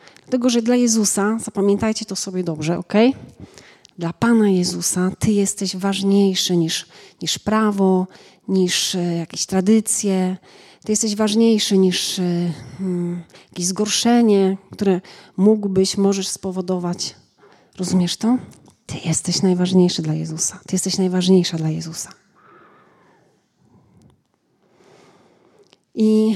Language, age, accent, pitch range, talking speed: Polish, 40-59, native, 180-220 Hz, 100 wpm